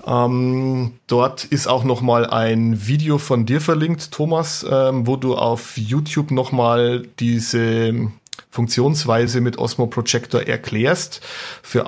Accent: German